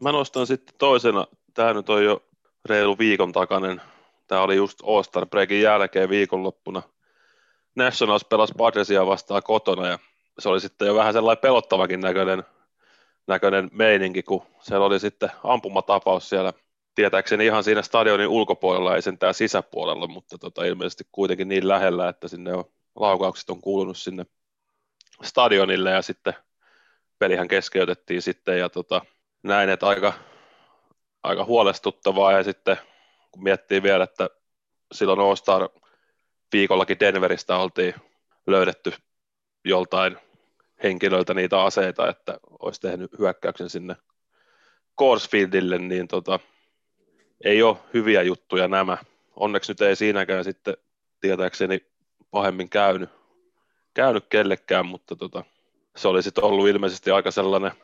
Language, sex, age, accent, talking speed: Finnish, male, 30-49, native, 125 wpm